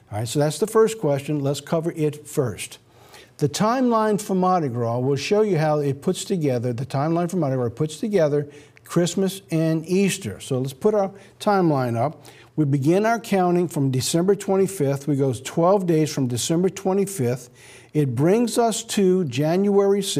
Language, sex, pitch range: English, male, 135-195 Hz